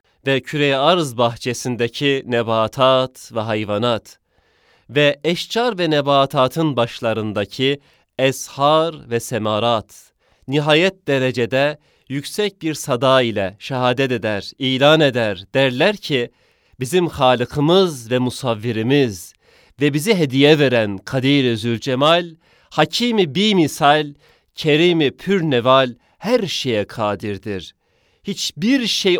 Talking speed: 95 wpm